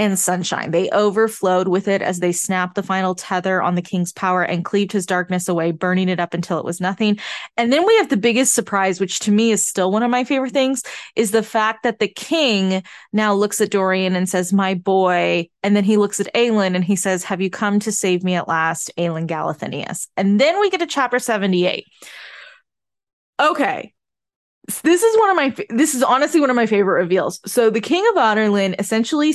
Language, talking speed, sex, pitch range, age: English, 215 wpm, female, 185-245 Hz, 20-39